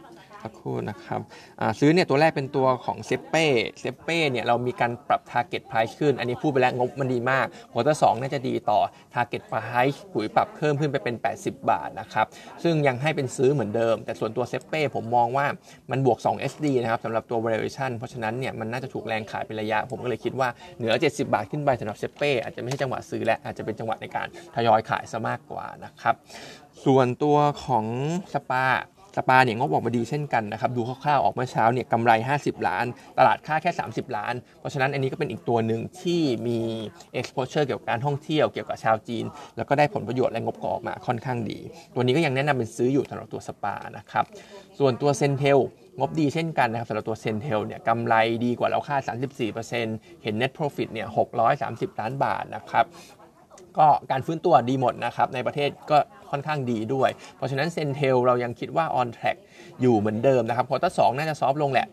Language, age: Thai, 20-39